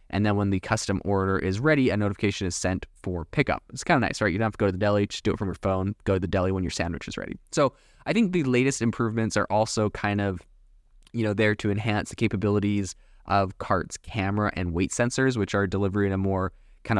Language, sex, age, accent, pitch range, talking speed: English, male, 20-39, American, 95-115 Hz, 250 wpm